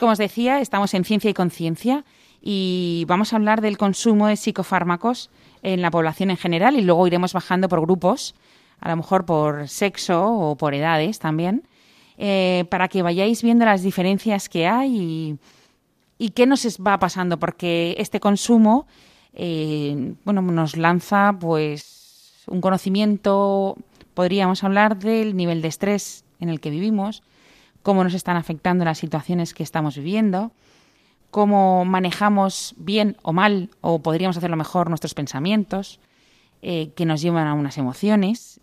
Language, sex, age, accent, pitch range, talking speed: Spanish, female, 30-49, Spanish, 155-200 Hz, 150 wpm